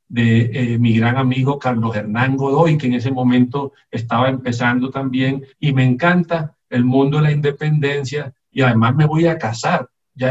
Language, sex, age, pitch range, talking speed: Spanish, male, 50-69, 120-145 Hz, 175 wpm